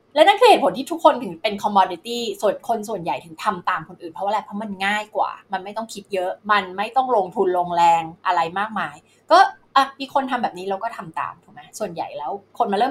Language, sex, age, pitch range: Thai, female, 20-39, 185-260 Hz